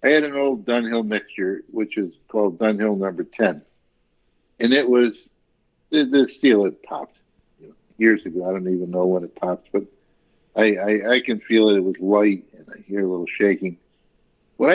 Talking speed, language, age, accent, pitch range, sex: 185 wpm, English, 60-79, American, 105-150 Hz, male